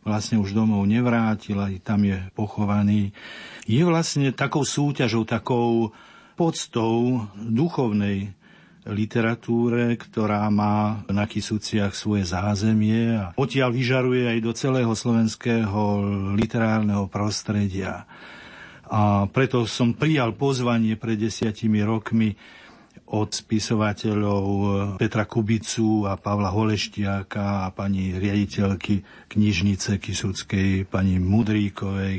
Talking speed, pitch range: 100 wpm, 100-115 Hz